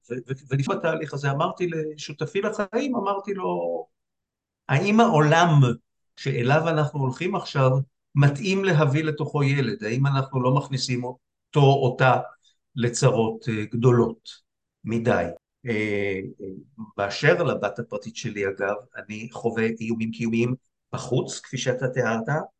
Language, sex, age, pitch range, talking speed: Hebrew, male, 50-69, 115-155 Hz, 120 wpm